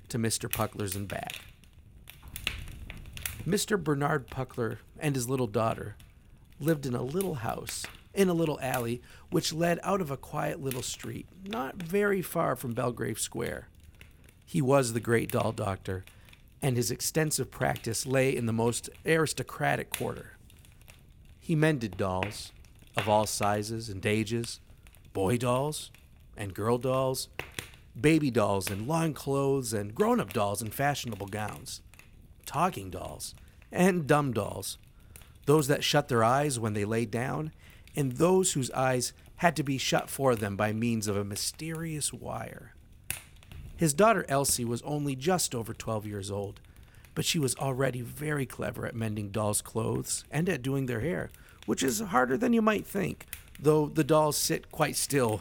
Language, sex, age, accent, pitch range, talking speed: English, male, 40-59, American, 105-145 Hz, 155 wpm